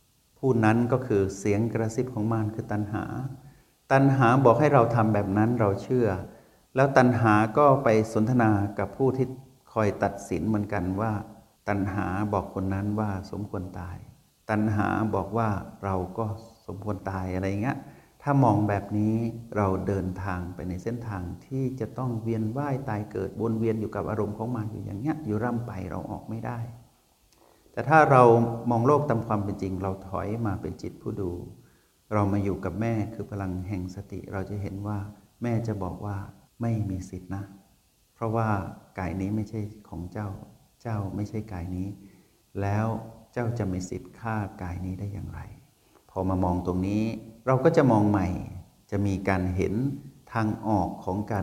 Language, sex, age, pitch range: Thai, male, 60-79, 95-115 Hz